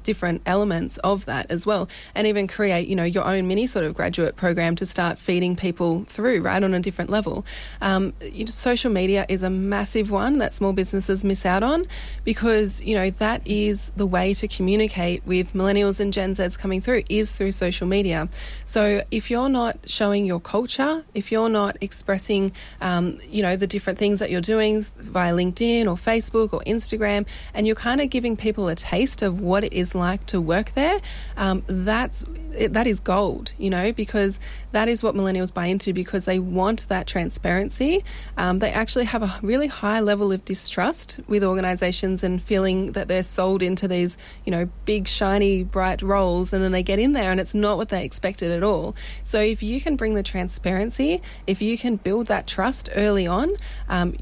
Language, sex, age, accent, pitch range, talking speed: English, female, 20-39, Australian, 185-215 Hz, 195 wpm